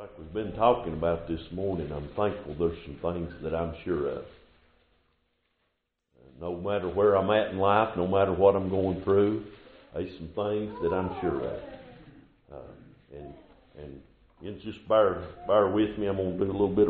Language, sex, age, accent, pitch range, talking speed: English, male, 50-69, American, 95-130 Hz, 180 wpm